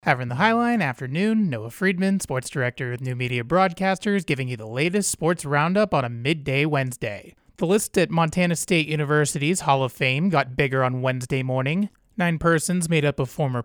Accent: American